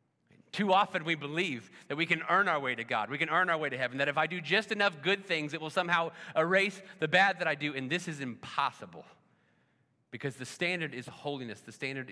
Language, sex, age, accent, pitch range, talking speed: English, male, 30-49, American, 130-175 Hz, 235 wpm